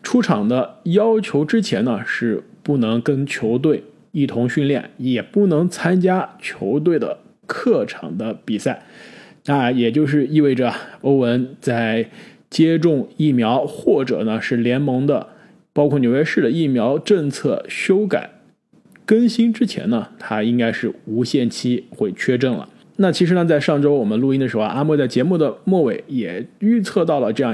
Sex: male